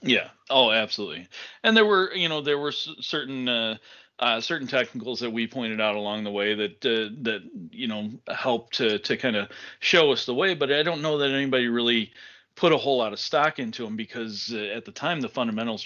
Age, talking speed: 40-59, 220 wpm